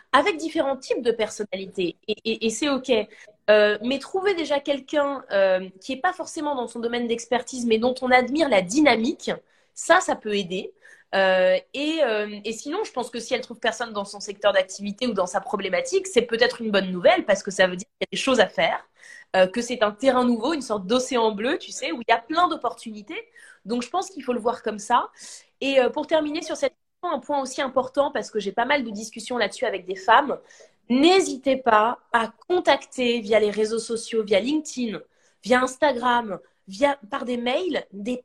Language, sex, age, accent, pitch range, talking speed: French, female, 20-39, French, 225-300 Hz, 215 wpm